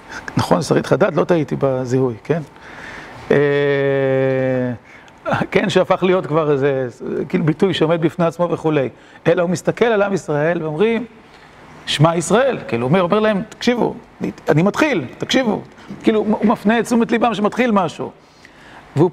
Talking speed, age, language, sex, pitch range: 140 wpm, 40-59, Hebrew, male, 145-195 Hz